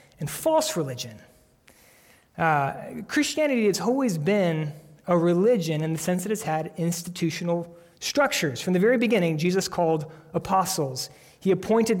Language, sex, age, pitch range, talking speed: English, male, 30-49, 155-195 Hz, 140 wpm